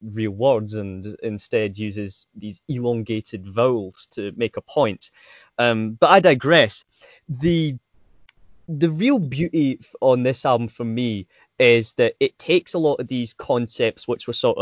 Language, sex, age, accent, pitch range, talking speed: English, male, 10-29, British, 110-150 Hz, 150 wpm